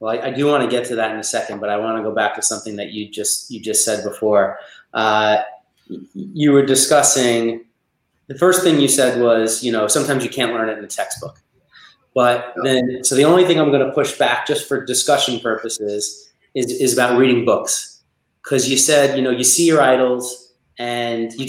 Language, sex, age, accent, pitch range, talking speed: English, male, 30-49, American, 115-150 Hz, 220 wpm